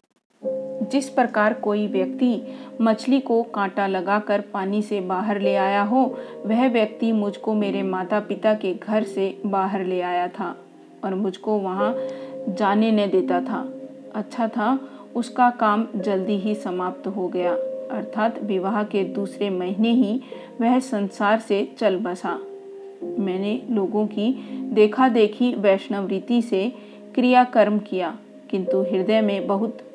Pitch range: 195-245 Hz